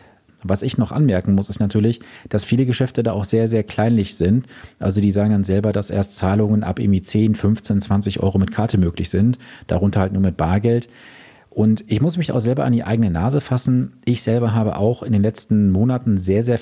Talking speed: 215 wpm